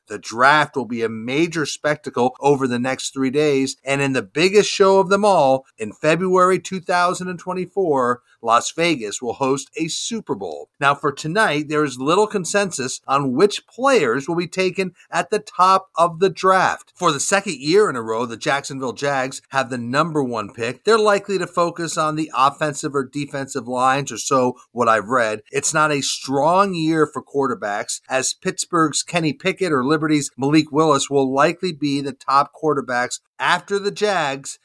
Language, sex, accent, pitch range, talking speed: English, male, American, 135-175 Hz, 180 wpm